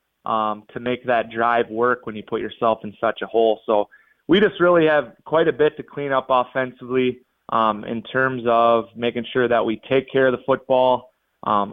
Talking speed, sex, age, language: 205 wpm, male, 20-39, English